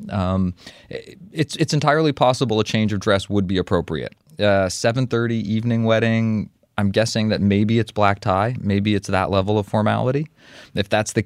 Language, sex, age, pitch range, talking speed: English, male, 30-49, 95-115 Hz, 170 wpm